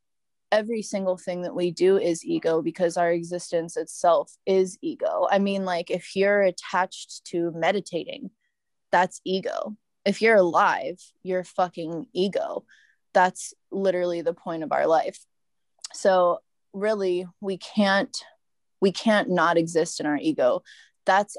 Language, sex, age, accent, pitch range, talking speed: English, female, 20-39, American, 170-200 Hz, 135 wpm